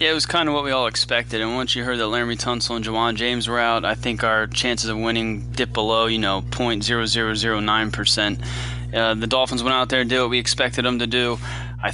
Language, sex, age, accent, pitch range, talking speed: English, male, 20-39, American, 115-130 Hz, 240 wpm